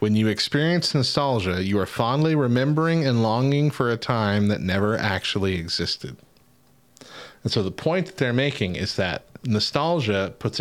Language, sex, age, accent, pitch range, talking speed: English, male, 30-49, American, 95-125 Hz, 160 wpm